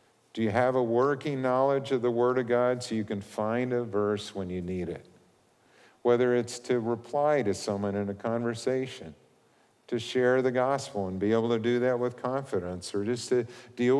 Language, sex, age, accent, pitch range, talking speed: English, male, 50-69, American, 110-135 Hz, 195 wpm